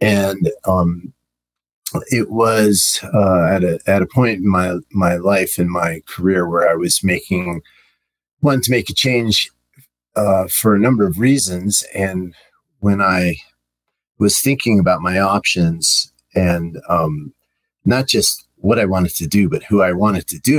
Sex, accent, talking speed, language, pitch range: male, American, 160 wpm, English, 90-105 Hz